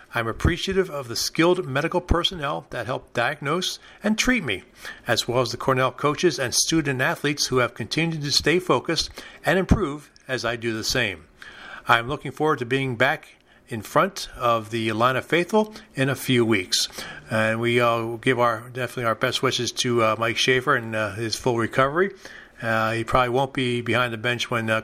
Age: 40-59